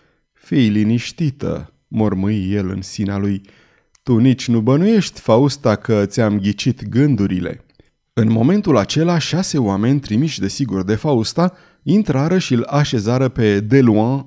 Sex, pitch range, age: male, 110-150 Hz, 30-49